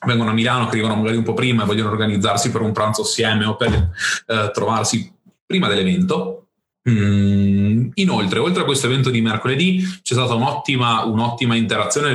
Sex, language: male, Italian